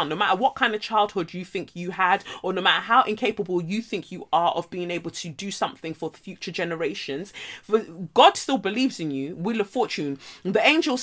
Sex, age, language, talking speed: female, 30-49, English, 210 wpm